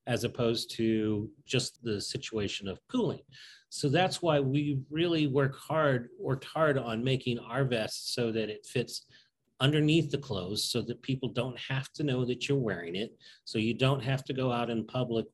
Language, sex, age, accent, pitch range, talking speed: English, male, 40-59, American, 115-145 Hz, 190 wpm